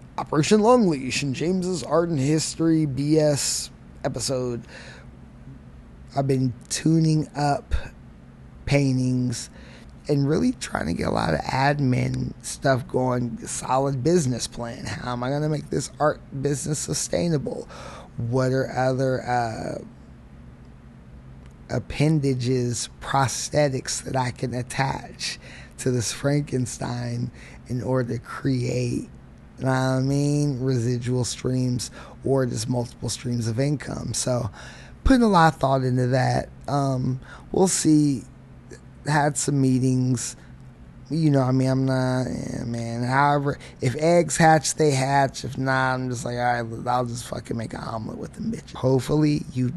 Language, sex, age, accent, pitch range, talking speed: English, male, 20-39, American, 125-145 Hz, 135 wpm